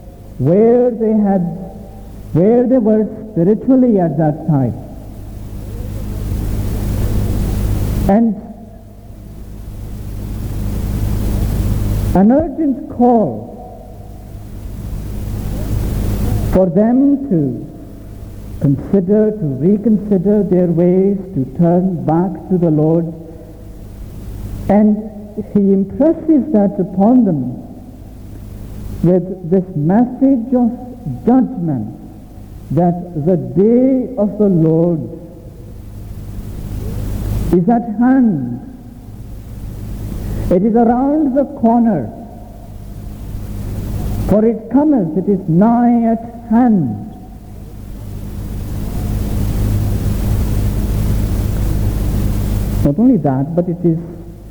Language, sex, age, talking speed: English, male, 60-79, 75 wpm